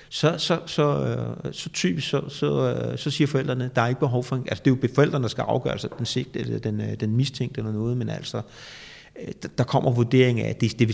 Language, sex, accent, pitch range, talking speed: Danish, male, native, 110-140 Hz, 230 wpm